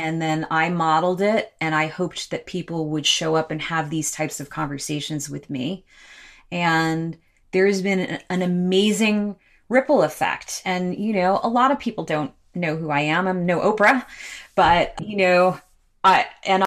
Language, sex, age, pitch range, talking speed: English, female, 30-49, 155-210 Hz, 175 wpm